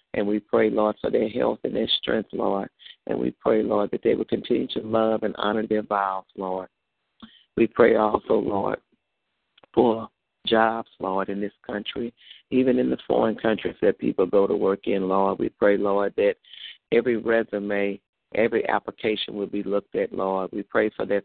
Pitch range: 100-110 Hz